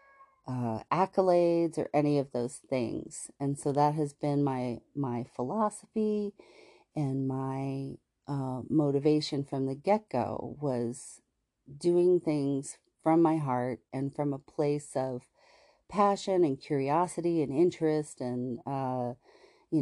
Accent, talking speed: American, 125 wpm